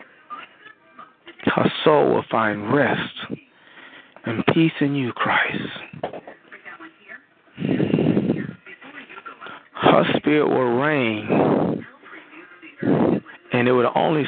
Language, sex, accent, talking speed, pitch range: English, male, American, 75 wpm, 145-215 Hz